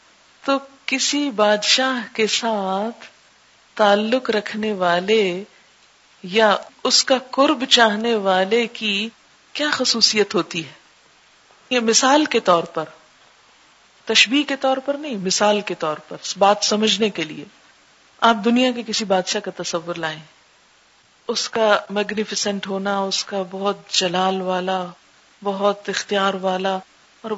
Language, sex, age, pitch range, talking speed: Urdu, female, 50-69, 195-235 Hz, 125 wpm